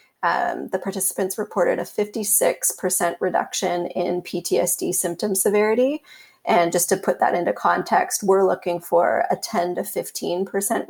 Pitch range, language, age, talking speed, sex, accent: 180-230 Hz, English, 30-49, 140 wpm, female, American